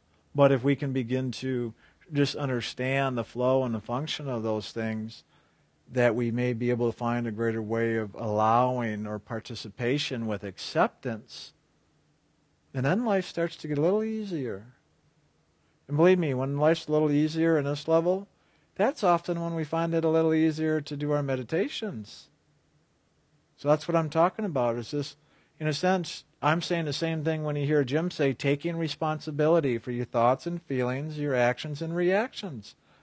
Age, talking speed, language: 50-69, 175 wpm, English